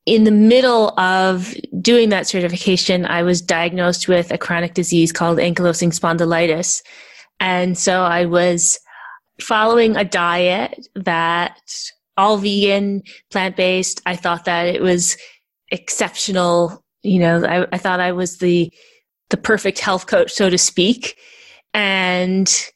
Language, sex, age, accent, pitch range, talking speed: English, female, 20-39, American, 175-200 Hz, 130 wpm